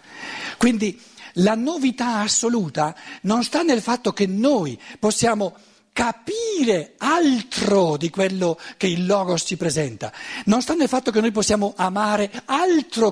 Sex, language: male, Italian